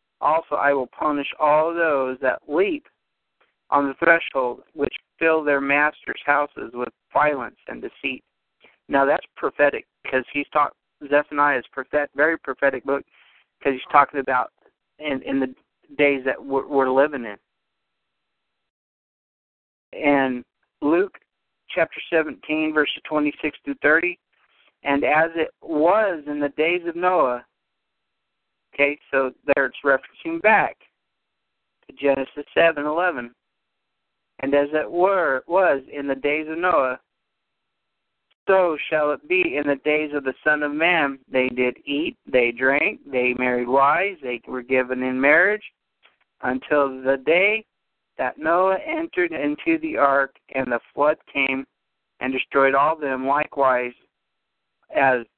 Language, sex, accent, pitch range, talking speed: English, male, American, 135-160 Hz, 135 wpm